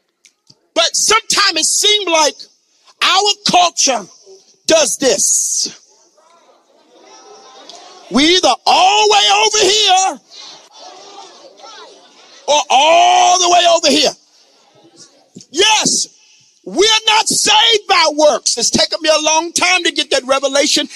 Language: English